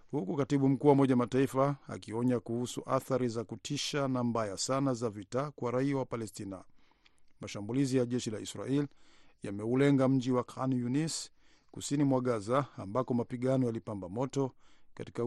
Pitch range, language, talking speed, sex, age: 115-135 Hz, Swahili, 150 wpm, male, 50-69